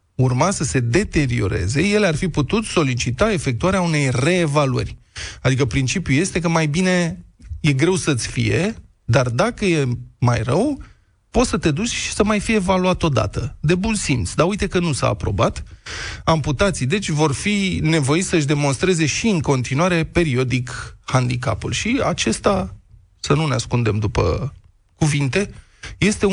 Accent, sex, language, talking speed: native, male, Romanian, 155 wpm